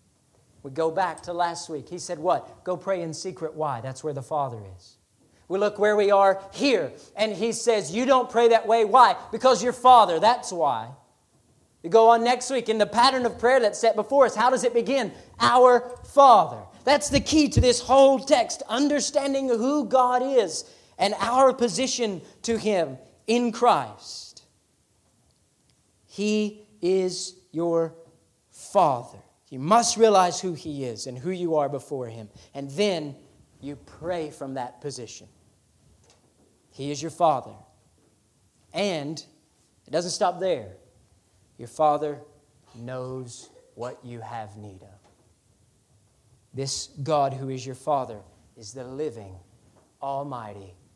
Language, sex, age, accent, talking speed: English, male, 40-59, American, 150 wpm